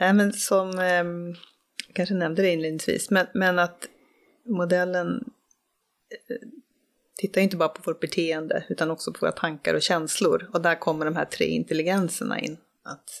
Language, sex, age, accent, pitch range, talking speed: Swedish, female, 30-49, native, 170-220 Hz, 155 wpm